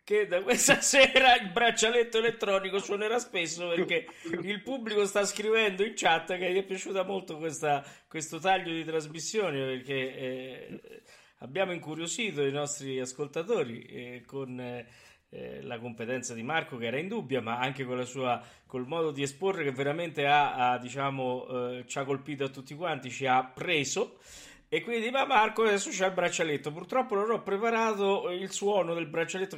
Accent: native